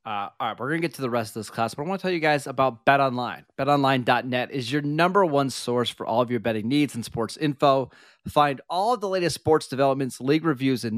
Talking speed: 255 wpm